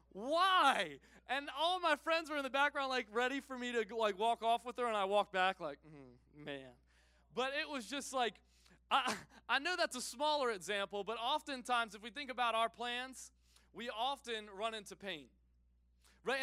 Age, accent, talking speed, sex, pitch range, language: 20-39, American, 190 wpm, male, 185-245 Hz, English